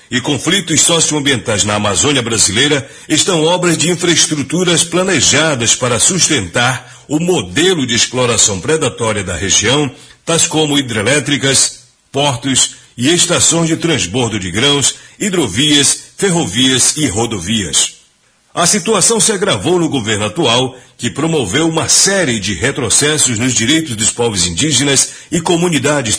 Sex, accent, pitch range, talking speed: male, Brazilian, 120-165 Hz, 125 wpm